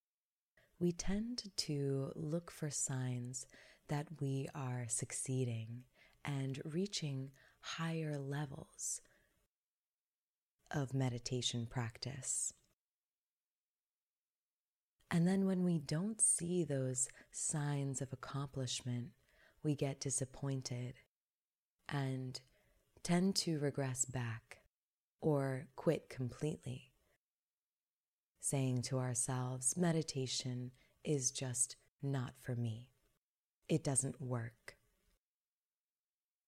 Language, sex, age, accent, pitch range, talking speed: English, female, 20-39, American, 130-160 Hz, 80 wpm